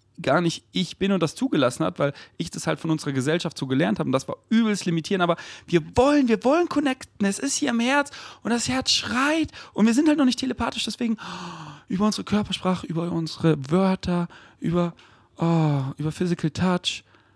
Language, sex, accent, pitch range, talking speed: German, male, German, 110-165 Hz, 200 wpm